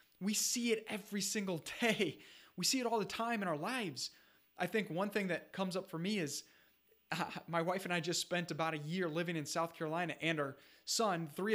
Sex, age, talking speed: male, 20-39, 225 wpm